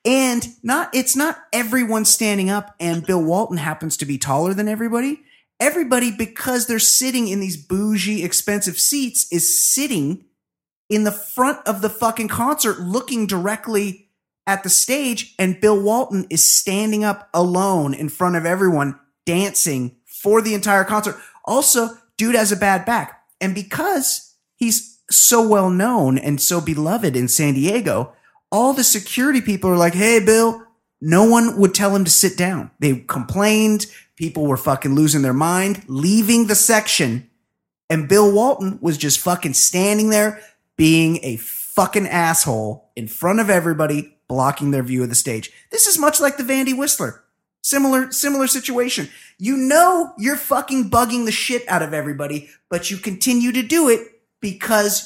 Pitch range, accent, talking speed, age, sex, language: 170-235 Hz, American, 160 wpm, 30-49, male, English